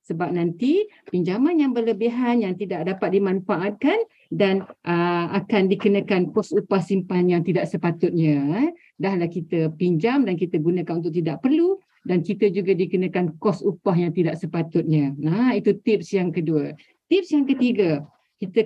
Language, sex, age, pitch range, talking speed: Malay, female, 50-69, 180-245 Hz, 160 wpm